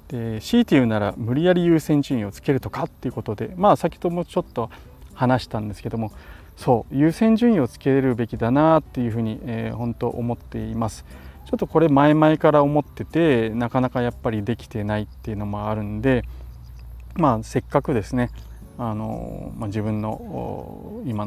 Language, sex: Japanese, male